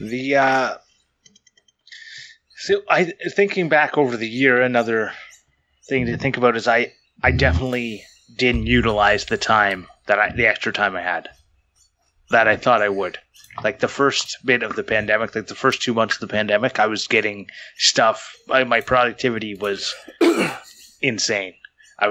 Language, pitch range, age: English, 105-135 Hz, 20-39